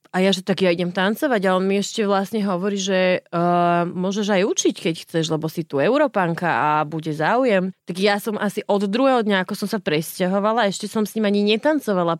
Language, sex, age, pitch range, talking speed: Slovak, female, 30-49, 175-220 Hz, 215 wpm